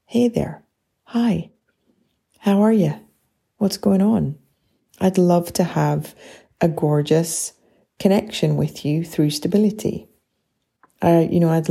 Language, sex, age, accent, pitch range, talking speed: English, female, 30-49, British, 140-170 Hz, 125 wpm